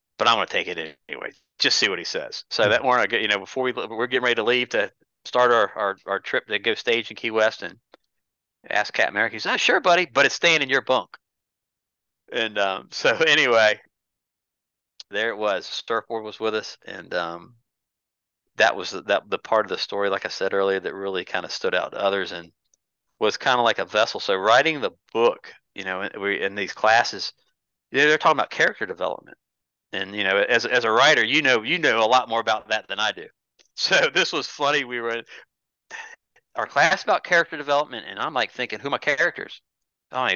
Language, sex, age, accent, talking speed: English, male, 40-59, American, 220 wpm